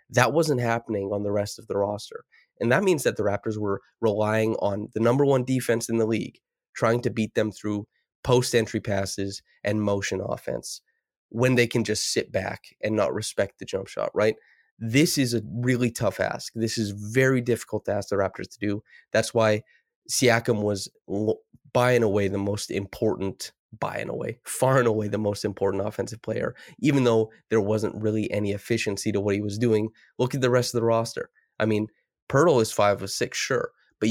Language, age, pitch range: English, 20-39, 105-120 Hz